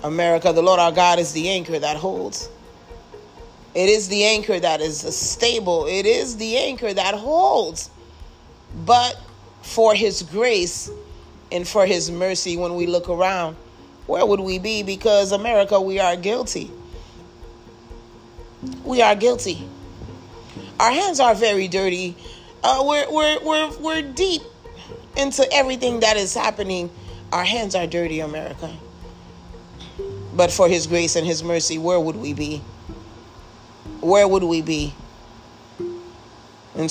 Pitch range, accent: 150-205 Hz, American